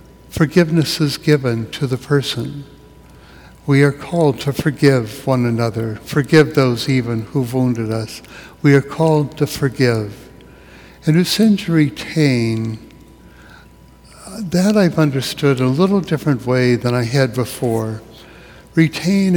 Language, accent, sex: English, American, male